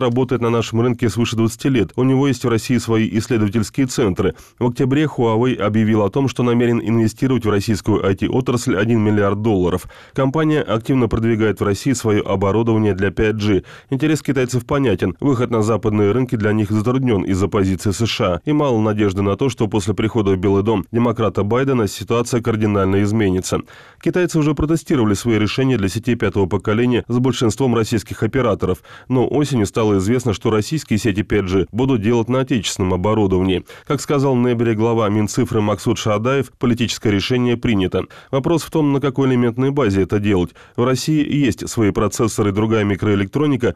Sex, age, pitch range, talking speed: male, 20-39, 105-125 Hz, 165 wpm